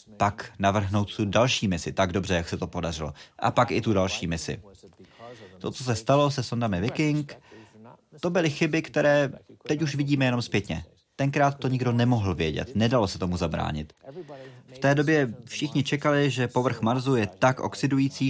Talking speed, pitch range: 175 wpm, 95-130 Hz